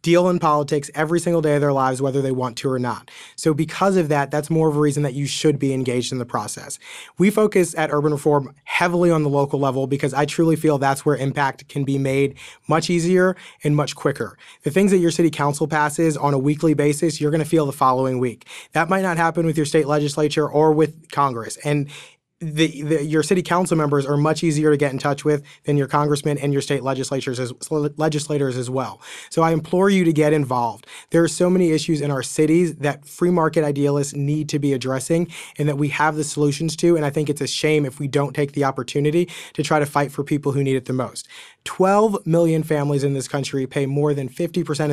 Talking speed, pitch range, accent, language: 230 wpm, 140-160 Hz, American, English